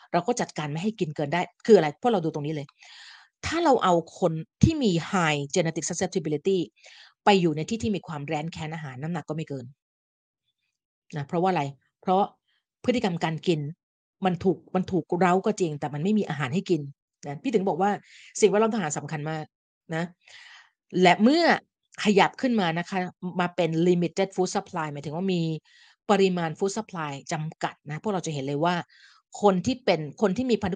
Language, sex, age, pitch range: Thai, female, 30-49, 155-190 Hz